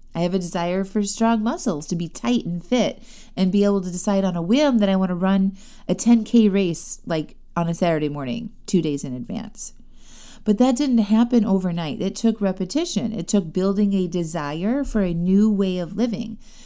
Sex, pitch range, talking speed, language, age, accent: female, 175-225 Hz, 200 wpm, English, 30-49, American